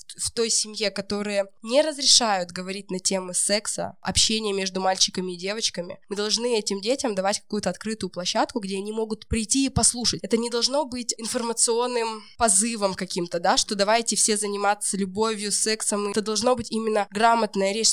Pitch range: 195-250 Hz